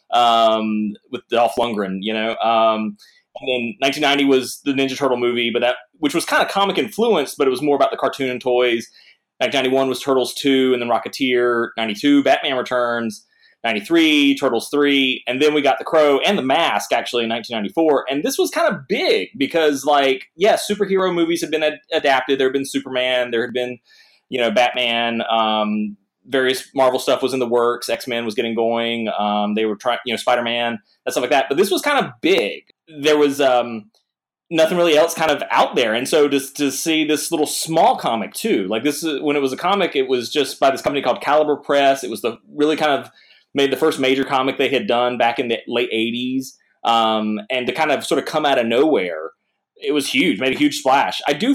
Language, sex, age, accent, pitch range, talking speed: English, male, 20-39, American, 120-155 Hz, 215 wpm